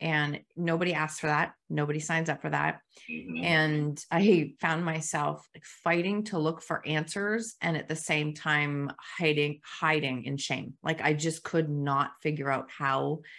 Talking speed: 160 wpm